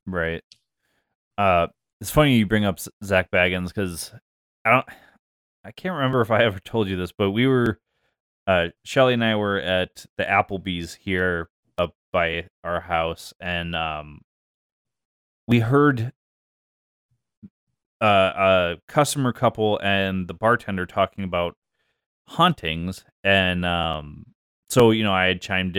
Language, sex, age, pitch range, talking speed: English, male, 20-39, 90-115 Hz, 135 wpm